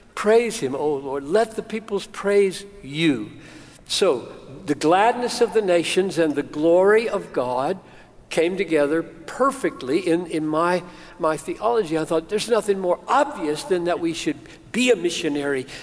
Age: 60-79